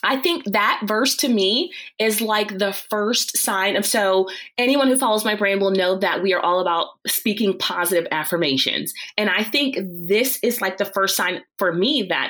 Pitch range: 175-210 Hz